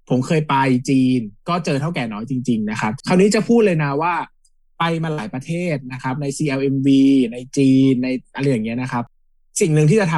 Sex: male